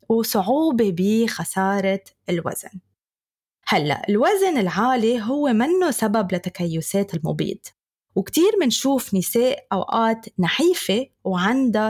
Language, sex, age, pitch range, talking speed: Arabic, female, 20-39, 185-230 Hz, 85 wpm